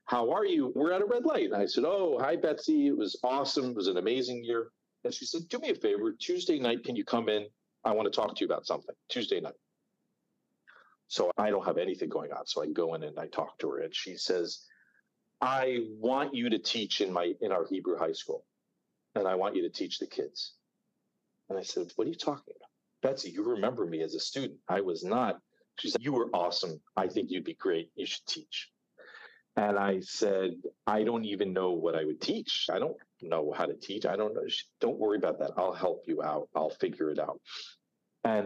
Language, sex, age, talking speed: English, male, 40-59, 230 wpm